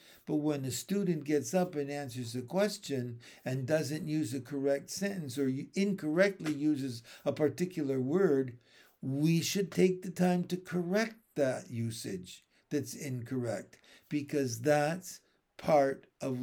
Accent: American